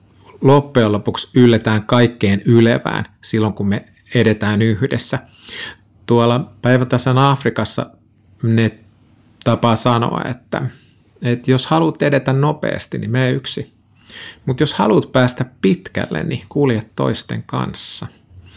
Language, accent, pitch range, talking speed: Finnish, native, 105-125 Hz, 105 wpm